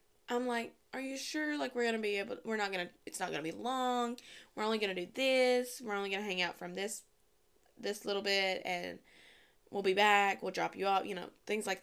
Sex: female